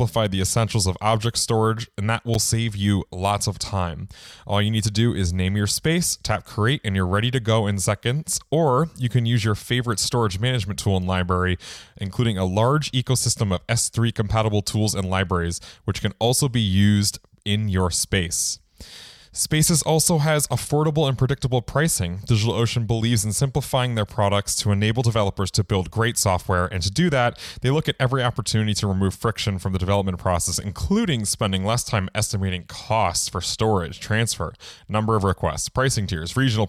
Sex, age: male, 20-39